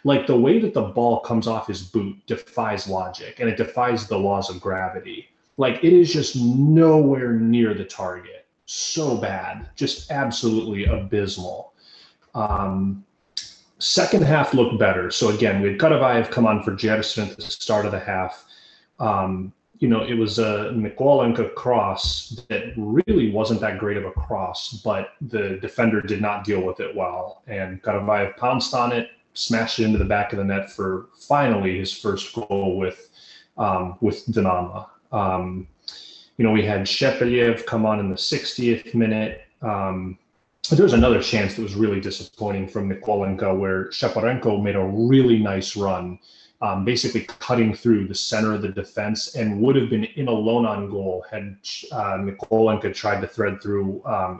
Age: 30-49